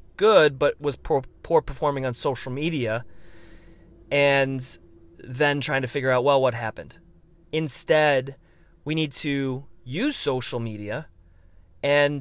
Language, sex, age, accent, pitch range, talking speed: English, male, 30-49, American, 115-150 Hz, 130 wpm